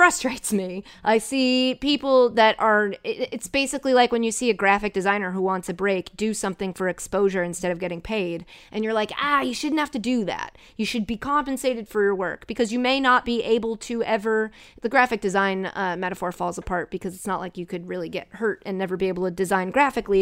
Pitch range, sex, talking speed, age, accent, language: 190-260 Hz, female, 225 wpm, 30-49, American, English